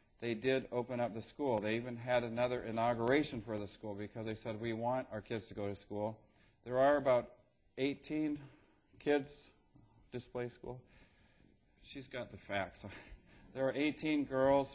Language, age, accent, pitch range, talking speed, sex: English, 40-59, American, 110-130 Hz, 165 wpm, male